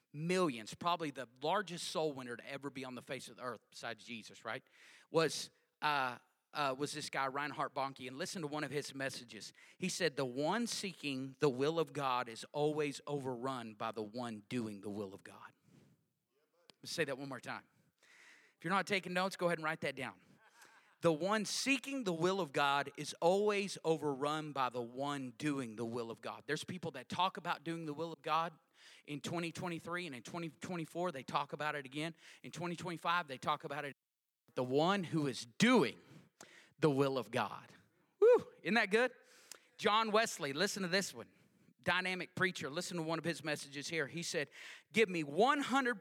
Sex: male